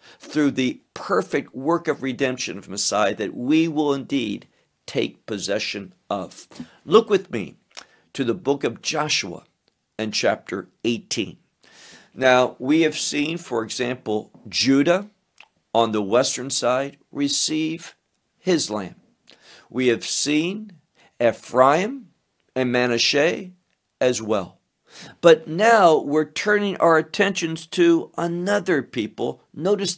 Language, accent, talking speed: English, American, 115 wpm